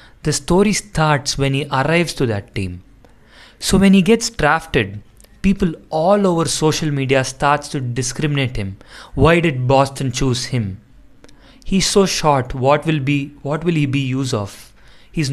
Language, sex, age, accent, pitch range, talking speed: English, male, 30-49, Indian, 125-155 Hz, 160 wpm